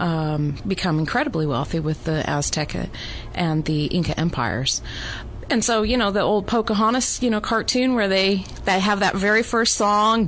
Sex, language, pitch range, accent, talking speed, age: female, English, 155-220 Hz, American, 170 wpm, 30-49